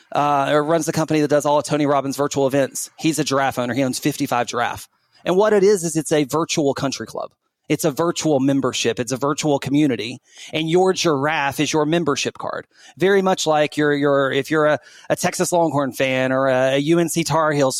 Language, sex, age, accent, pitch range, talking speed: English, male, 30-49, American, 145-170 Hz, 210 wpm